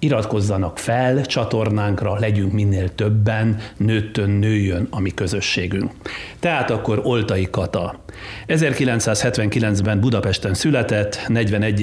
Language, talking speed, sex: Hungarian, 95 wpm, male